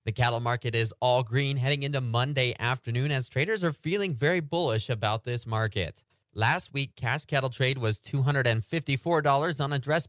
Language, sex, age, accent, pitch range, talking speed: English, male, 30-49, American, 110-145 Hz, 170 wpm